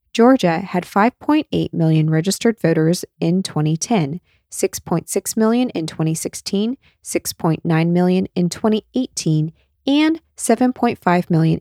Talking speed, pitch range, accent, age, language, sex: 100 wpm, 160-220 Hz, American, 20-39, English, female